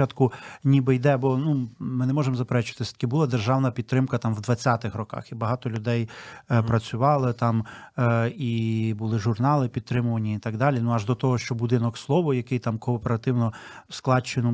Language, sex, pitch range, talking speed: Ukrainian, male, 120-150 Hz, 180 wpm